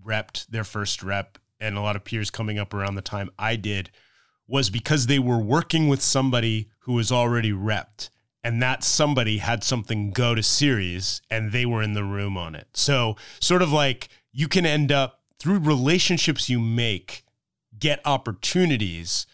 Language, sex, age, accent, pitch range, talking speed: English, male, 30-49, American, 105-145 Hz, 175 wpm